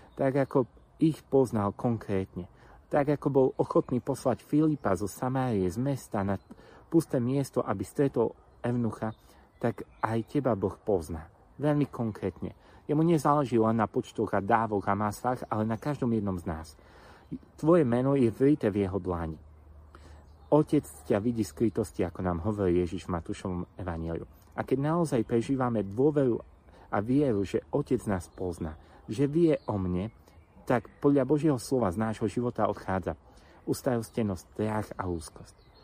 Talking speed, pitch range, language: 145 wpm, 95-135 Hz, Slovak